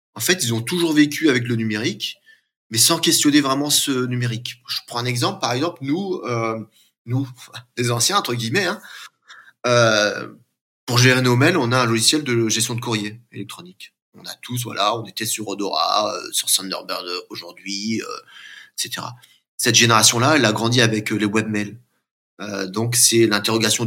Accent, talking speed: French, 175 wpm